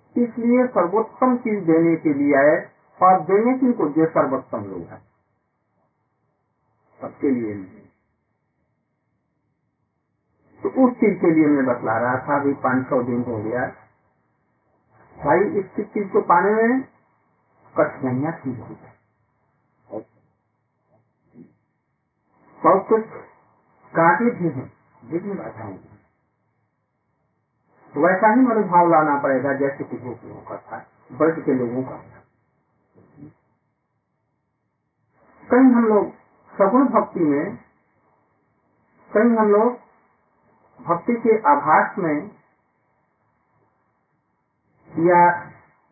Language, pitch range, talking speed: Hindi, 125-205 Hz, 95 wpm